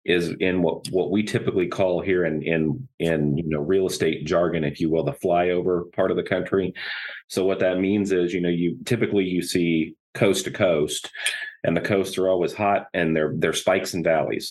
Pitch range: 80-95 Hz